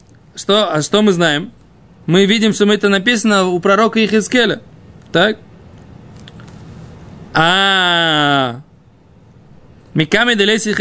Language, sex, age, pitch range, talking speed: Russian, male, 20-39, 185-245 Hz, 85 wpm